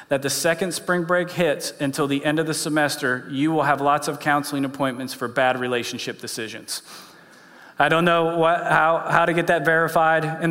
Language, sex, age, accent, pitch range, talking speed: English, male, 40-59, American, 135-160 Hz, 195 wpm